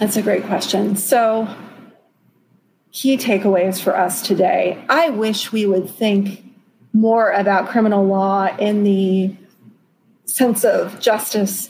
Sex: female